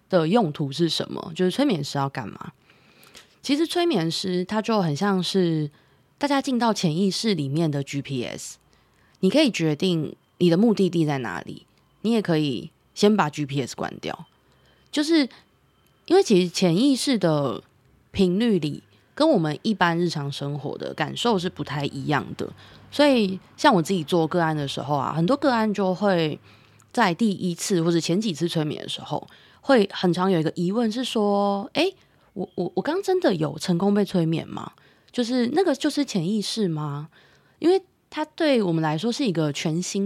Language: Chinese